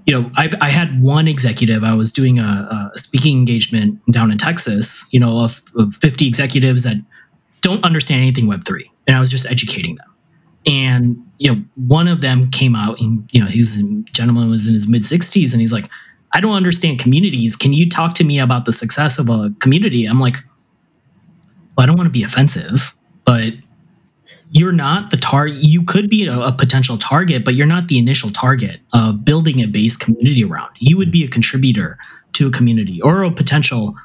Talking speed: 205 wpm